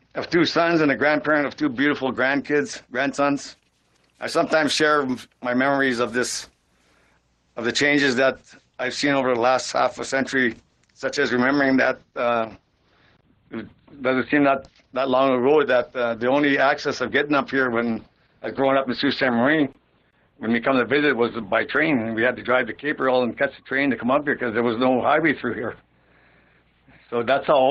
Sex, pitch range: male, 120-135 Hz